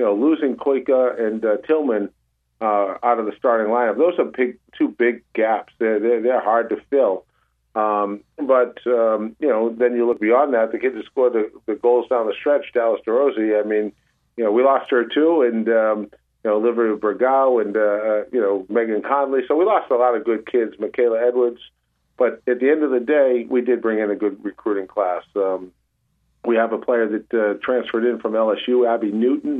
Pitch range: 105-125 Hz